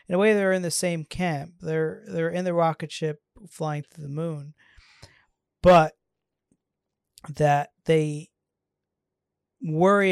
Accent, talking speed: American, 130 wpm